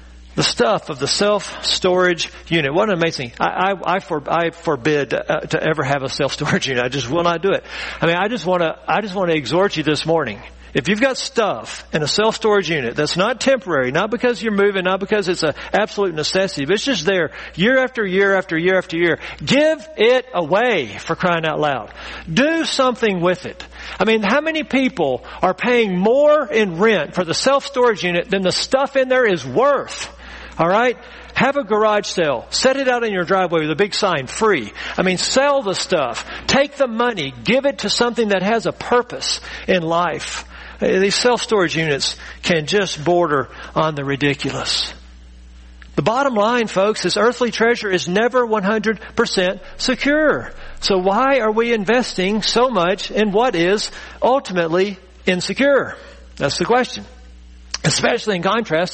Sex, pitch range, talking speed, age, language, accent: male, 165-235 Hz, 180 wpm, 50-69, English, American